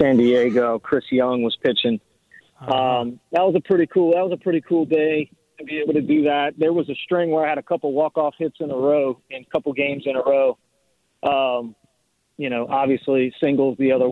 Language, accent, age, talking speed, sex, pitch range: English, American, 40-59, 225 wpm, male, 125-150 Hz